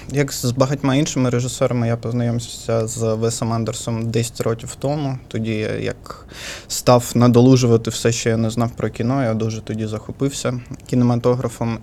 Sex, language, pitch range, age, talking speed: male, Ukrainian, 115-130 Hz, 20-39, 145 wpm